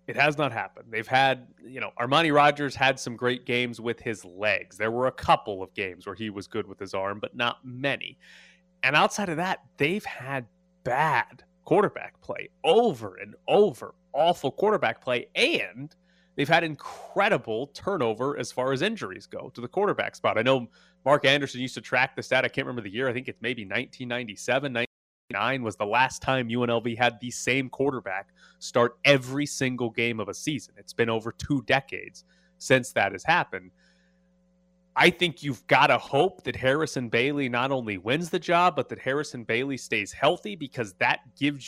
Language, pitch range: English, 120-145 Hz